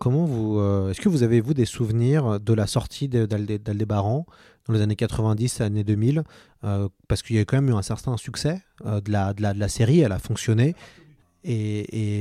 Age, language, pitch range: 30-49, French, 115-145 Hz